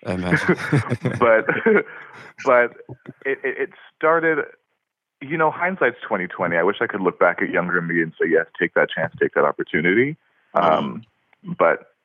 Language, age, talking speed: English, 30-49, 150 wpm